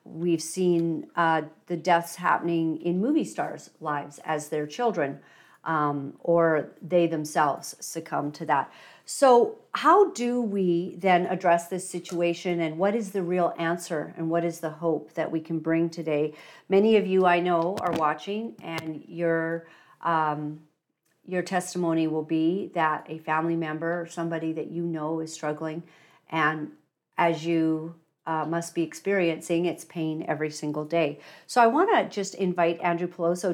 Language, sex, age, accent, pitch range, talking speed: English, female, 50-69, American, 160-185 Hz, 160 wpm